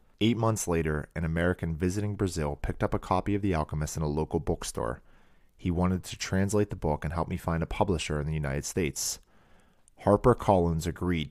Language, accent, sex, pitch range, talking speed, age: English, American, male, 80-95 Hz, 195 wpm, 30-49